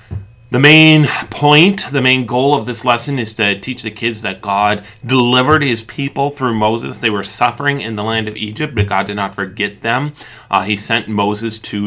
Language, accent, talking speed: English, American, 200 wpm